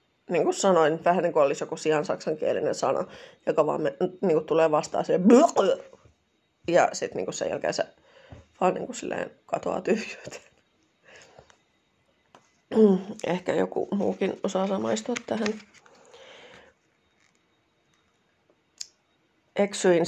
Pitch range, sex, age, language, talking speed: 175-270 Hz, female, 30-49, Finnish, 105 wpm